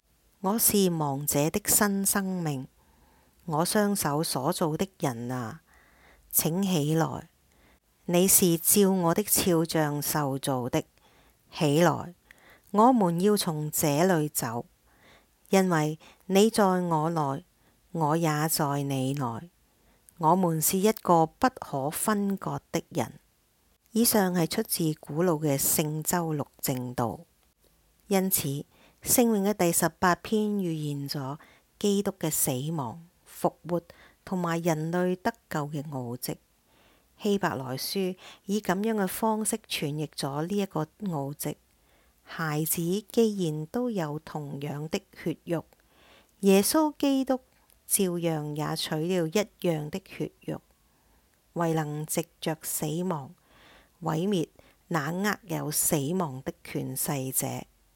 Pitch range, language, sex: 150-190 Hz, English, female